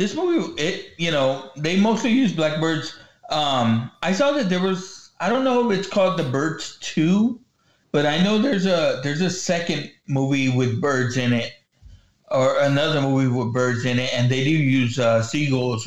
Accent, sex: American, male